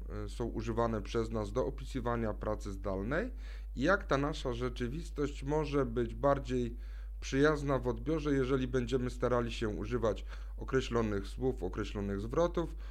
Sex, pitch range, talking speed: male, 110-140 Hz, 130 wpm